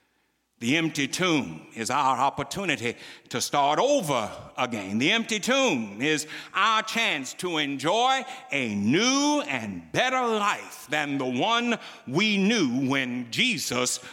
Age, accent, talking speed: 60-79, American, 125 wpm